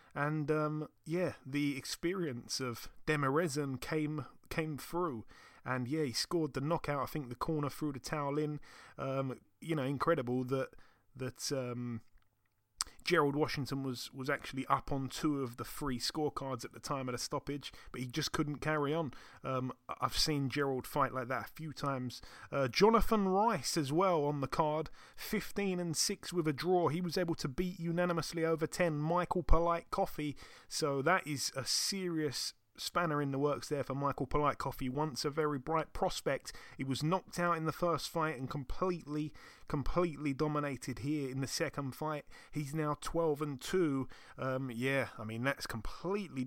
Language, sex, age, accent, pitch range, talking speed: English, male, 30-49, British, 135-165 Hz, 175 wpm